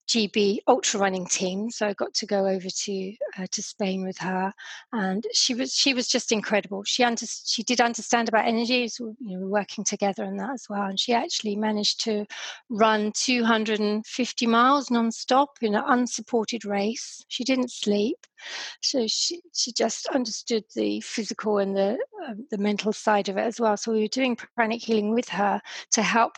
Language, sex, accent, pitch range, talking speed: English, female, British, 210-245 Hz, 185 wpm